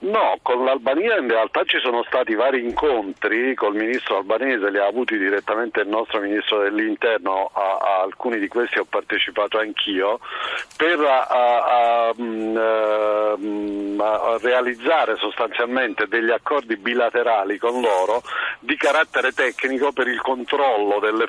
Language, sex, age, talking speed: Italian, male, 50-69, 140 wpm